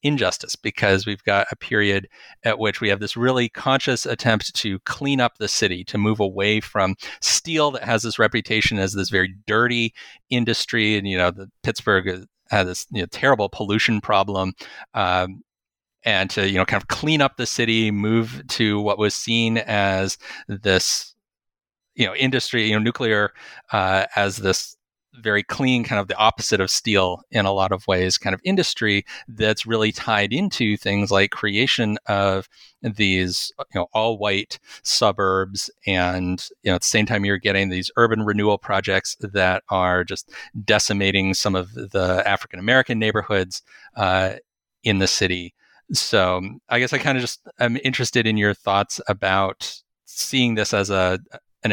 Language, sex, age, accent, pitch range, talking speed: English, male, 30-49, American, 95-115 Hz, 170 wpm